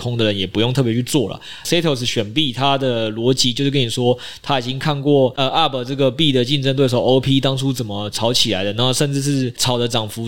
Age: 20-39